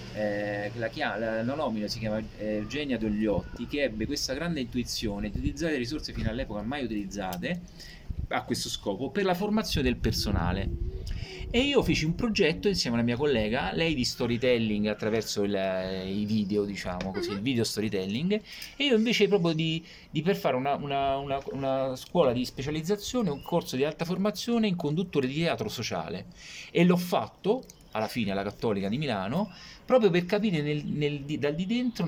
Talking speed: 180 wpm